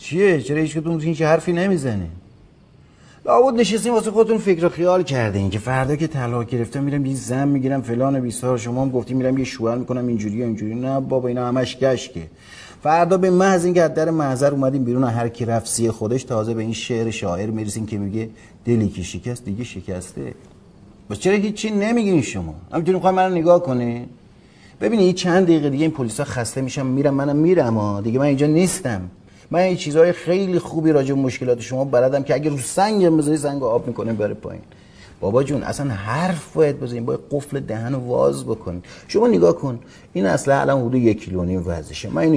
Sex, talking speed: male, 195 wpm